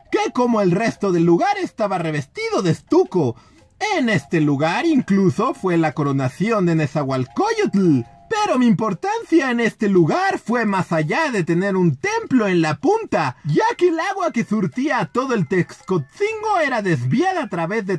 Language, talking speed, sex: Spanish, 165 wpm, male